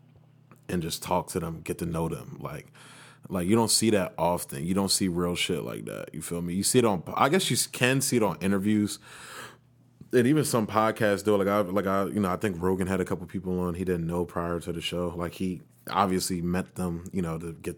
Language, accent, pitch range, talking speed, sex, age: English, American, 85-110 Hz, 245 wpm, male, 20-39